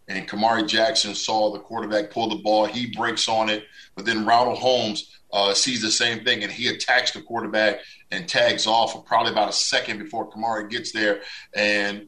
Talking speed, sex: 200 wpm, male